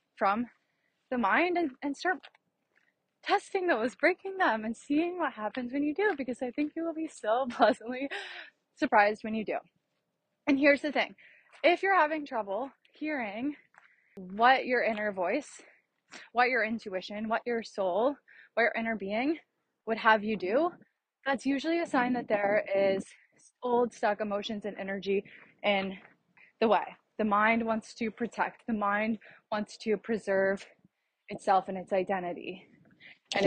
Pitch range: 210-295 Hz